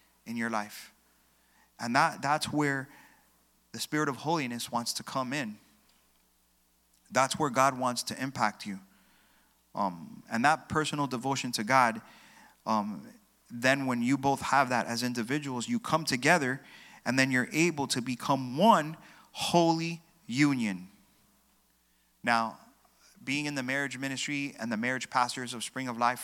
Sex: male